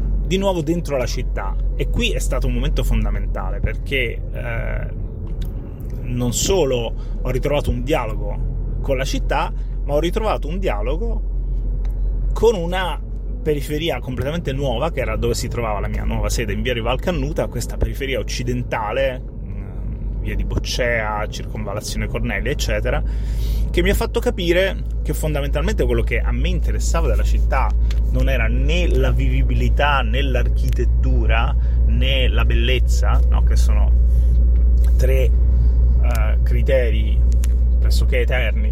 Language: Italian